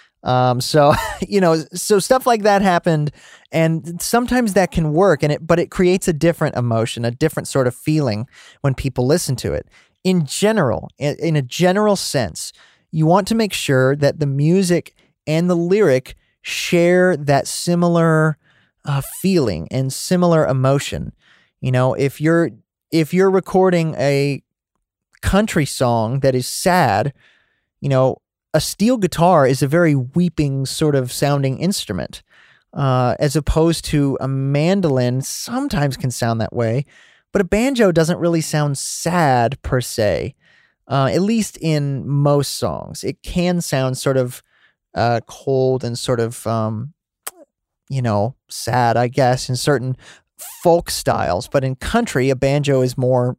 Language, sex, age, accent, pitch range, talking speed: English, male, 30-49, American, 130-175 Hz, 155 wpm